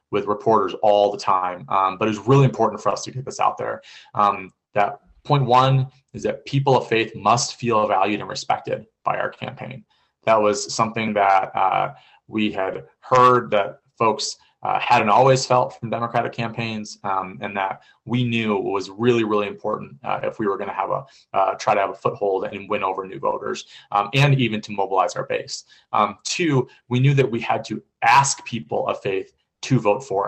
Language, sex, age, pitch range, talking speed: English, male, 20-39, 105-130 Hz, 200 wpm